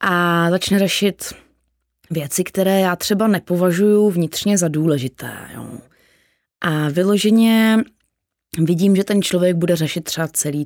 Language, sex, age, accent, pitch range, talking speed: Czech, female, 20-39, native, 155-195 Hz, 125 wpm